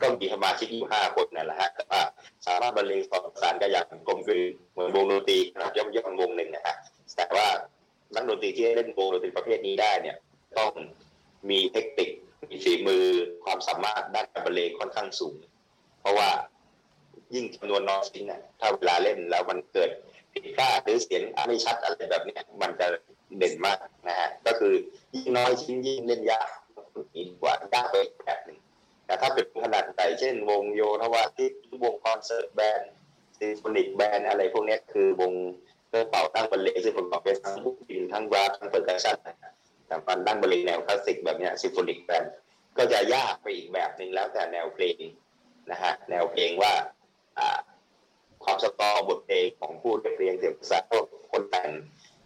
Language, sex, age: Thai, male, 30-49